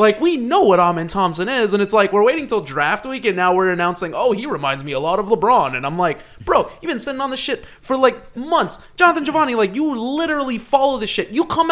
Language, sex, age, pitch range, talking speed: English, male, 20-39, 150-235 Hz, 255 wpm